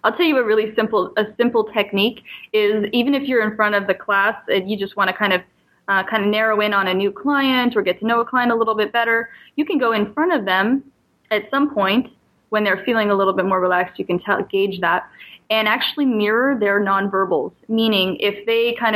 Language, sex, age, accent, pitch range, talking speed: English, female, 10-29, American, 200-240 Hz, 240 wpm